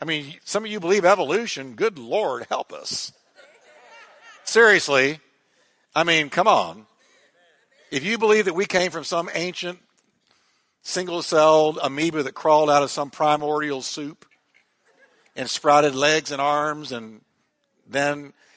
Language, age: English, 60-79